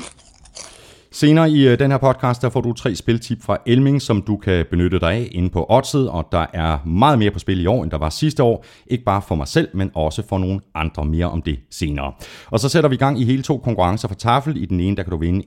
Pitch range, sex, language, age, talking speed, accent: 85-140 Hz, male, Danish, 30-49, 265 wpm, native